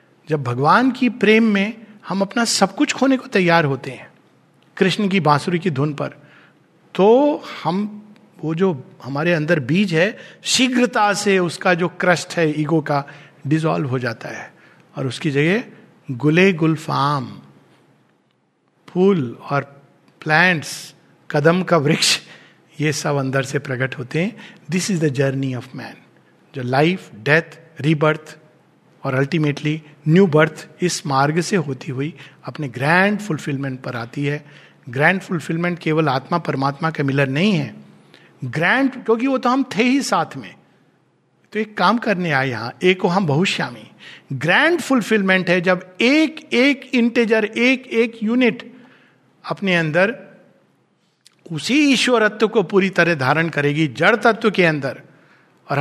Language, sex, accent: Hindi, male, native